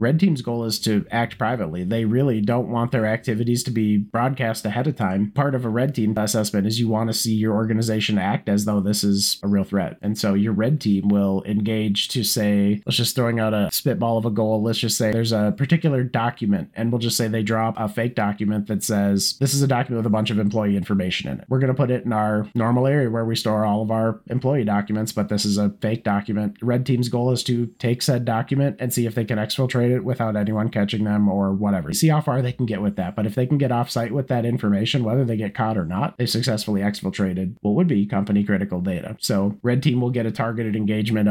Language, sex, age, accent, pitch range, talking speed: English, male, 30-49, American, 100-120 Hz, 255 wpm